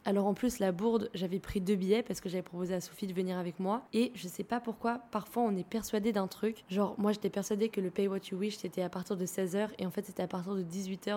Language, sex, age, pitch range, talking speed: French, female, 20-39, 185-215 Hz, 285 wpm